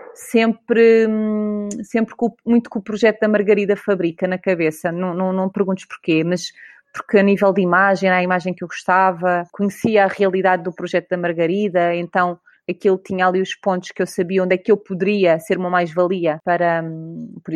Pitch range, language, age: 180-210 Hz, Portuguese, 30-49